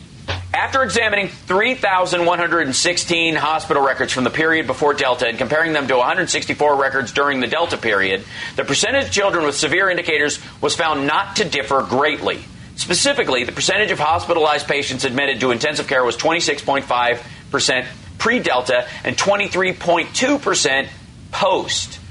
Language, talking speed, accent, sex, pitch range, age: English, 135 wpm, American, male, 120-165 Hz, 40-59